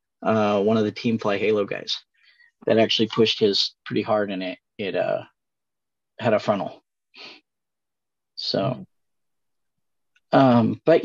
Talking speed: 130 wpm